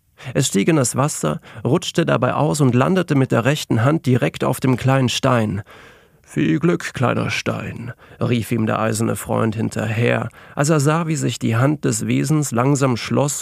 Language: German